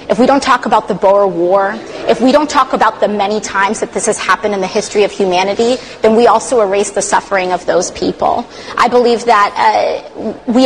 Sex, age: female, 30-49